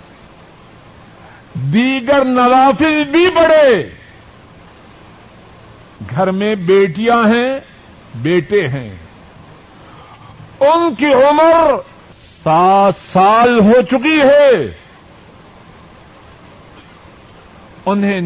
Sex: male